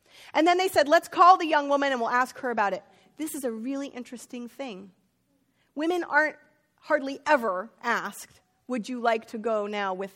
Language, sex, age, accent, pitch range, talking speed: English, female, 30-49, American, 220-285 Hz, 195 wpm